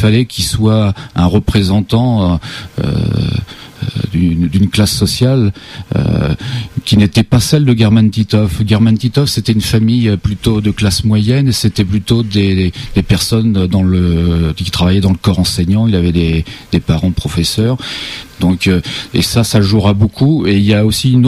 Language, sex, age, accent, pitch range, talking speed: French, male, 40-59, French, 100-120 Hz, 165 wpm